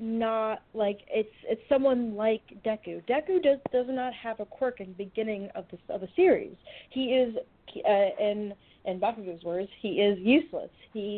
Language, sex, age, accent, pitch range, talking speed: English, female, 30-49, American, 205-245 Hz, 175 wpm